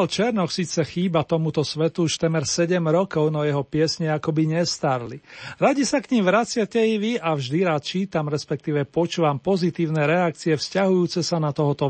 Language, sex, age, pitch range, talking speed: Slovak, male, 40-59, 155-185 Hz, 165 wpm